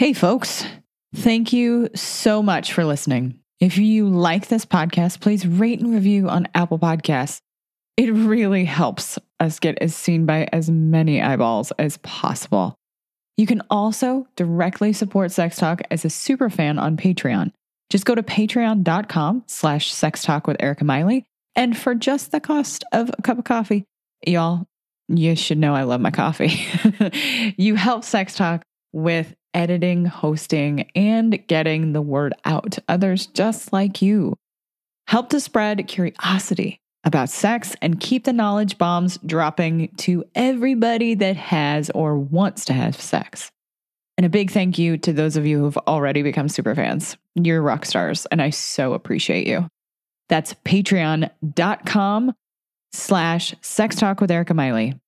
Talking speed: 150 wpm